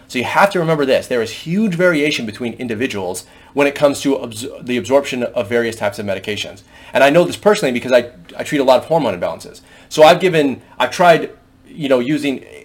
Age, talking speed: 30-49, 215 wpm